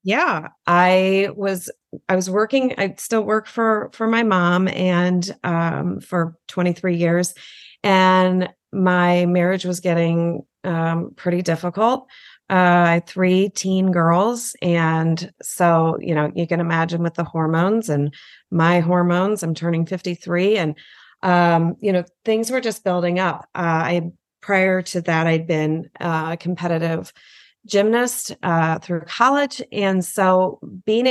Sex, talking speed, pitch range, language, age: female, 140 wpm, 165-195 Hz, English, 30-49